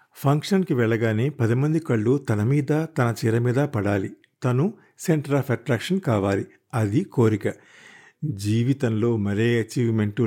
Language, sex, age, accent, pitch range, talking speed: Telugu, male, 50-69, native, 110-135 Hz, 115 wpm